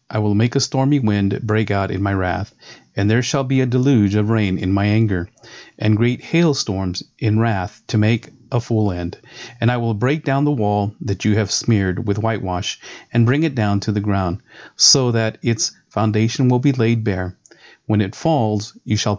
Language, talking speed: English, 205 wpm